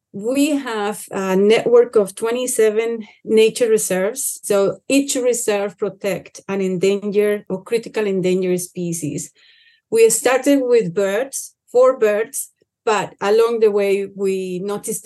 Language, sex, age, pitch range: English, female, 40-59, 190-230 Hz